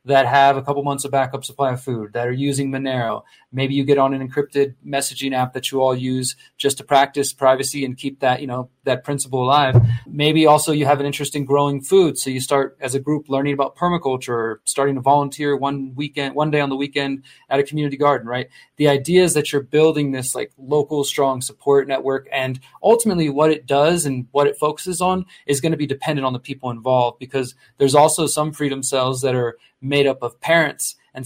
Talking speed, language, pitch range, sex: 225 wpm, English, 130-145 Hz, male